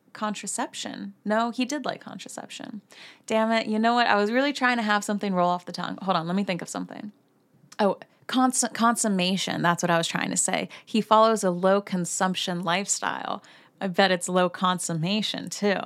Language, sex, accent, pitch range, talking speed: English, female, American, 180-230 Hz, 195 wpm